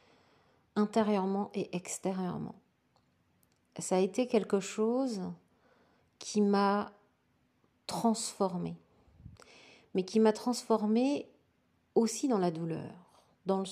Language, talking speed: French, 90 wpm